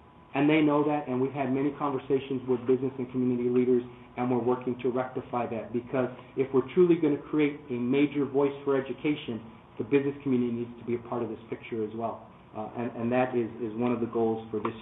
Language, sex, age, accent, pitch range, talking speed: English, male, 40-59, American, 125-155 Hz, 230 wpm